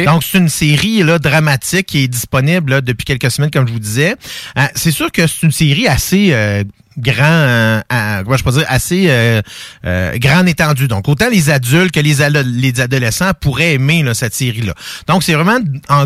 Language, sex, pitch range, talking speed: French, male, 125-165 Hz, 210 wpm